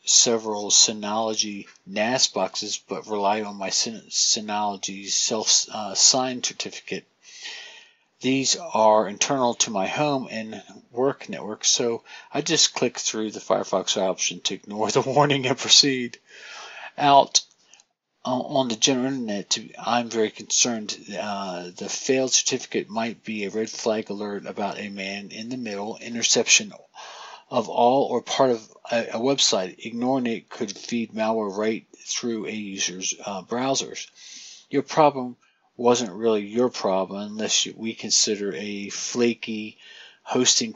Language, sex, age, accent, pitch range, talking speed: English, male, 50-69, American, 105-125 Hz, 135 wpm